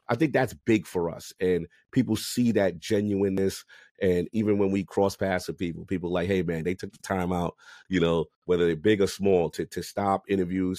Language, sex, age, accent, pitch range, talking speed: English, male, 30-49, American, 90-110 Hz, 215 wpm